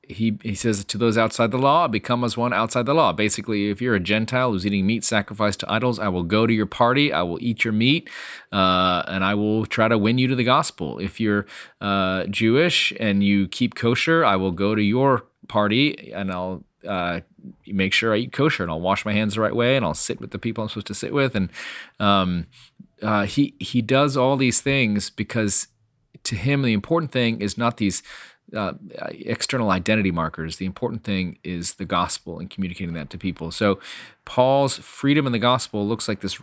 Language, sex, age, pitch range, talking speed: English, male, 30-49, 100-125 Hz, 215 wpm